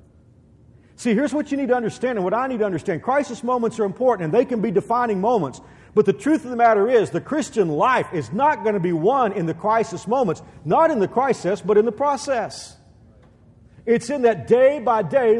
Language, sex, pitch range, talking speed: English, male, 160-235 Hz, 220 wpm